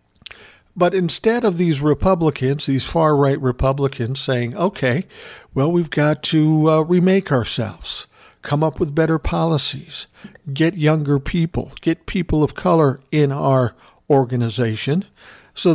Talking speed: 130 wpm